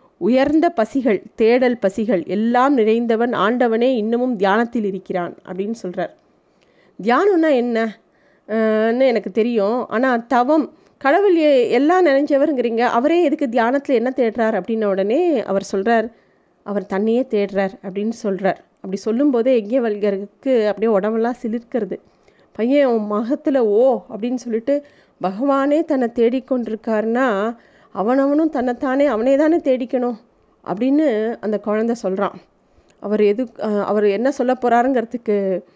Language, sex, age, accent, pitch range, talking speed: Tamil, female, 30-49, native, 210-260 Hz, 110 wpm